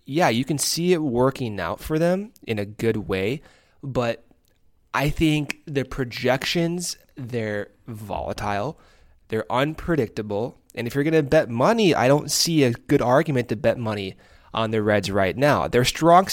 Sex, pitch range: male, 110-140 Hz